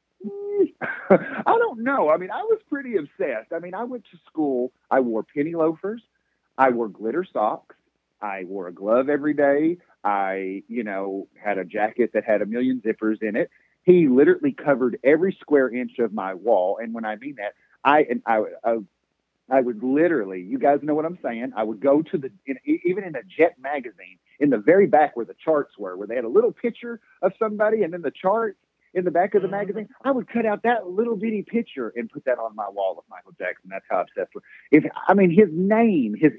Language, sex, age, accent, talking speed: English, male, 40-59, American, 220 wpm